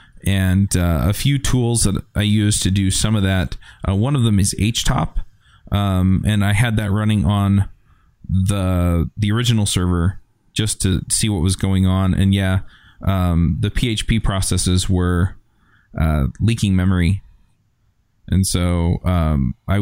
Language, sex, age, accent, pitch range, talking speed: English, male, 20-39, American, 90-105 Hz, 155 wpm